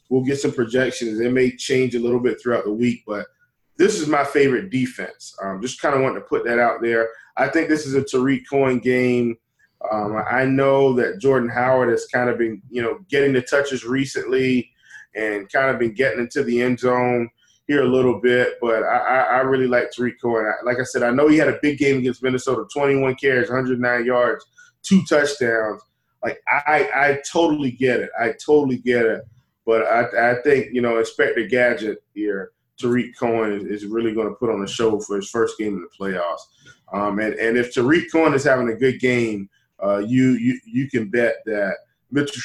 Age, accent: 20-39, American